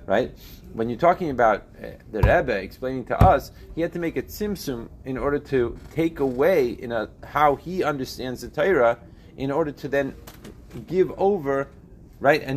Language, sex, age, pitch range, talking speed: English, male, 30-49, 95-140 Hz, 175 wpm